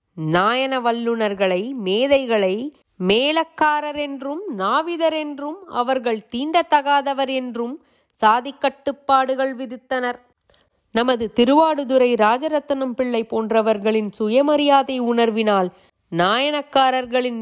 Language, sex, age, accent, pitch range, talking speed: Tamil, female, 30-49, native, 215-280 Hz, 70 wpm